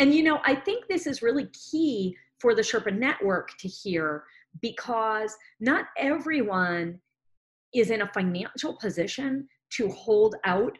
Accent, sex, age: American, female, 40-59